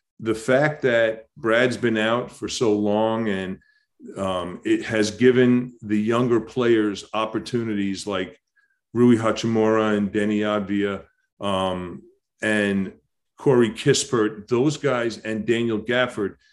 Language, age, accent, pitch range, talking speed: English, 40-59, American, 100-120 Hz, 120 wpm